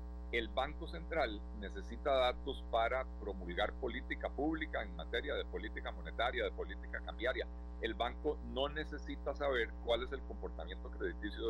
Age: 40-59